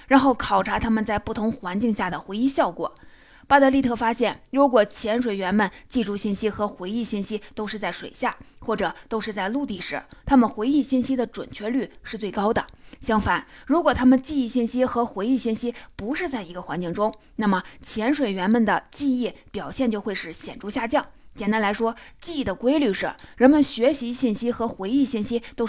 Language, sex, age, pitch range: Chinese, female, 20-39, 205-265 Hz